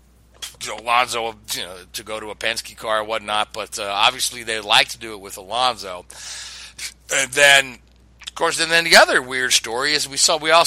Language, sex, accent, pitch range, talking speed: English, male, American, 110-130 Hz, 200 wpm